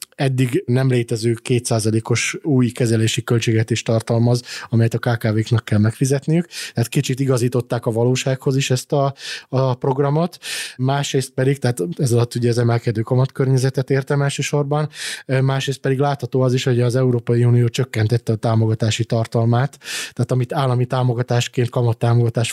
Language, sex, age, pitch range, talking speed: Hungarian, male, 20-39, 115-135 Hz, 145 wpm